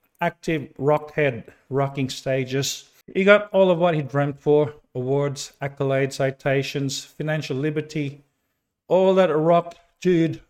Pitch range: 145-190 Hz